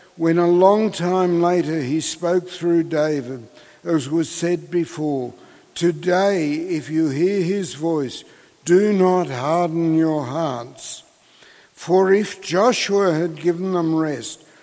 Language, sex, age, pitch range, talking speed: English, male, 60-79, 155-185 Hz, 125 wpm